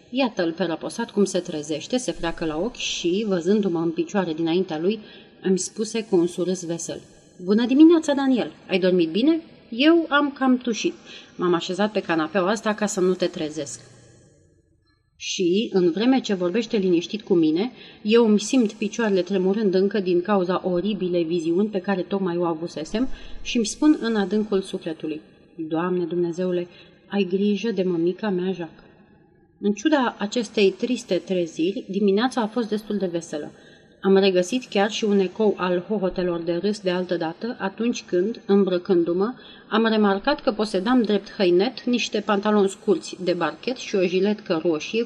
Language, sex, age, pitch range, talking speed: Romanian, female, 30-49, 180-220 Hz, 160 wpm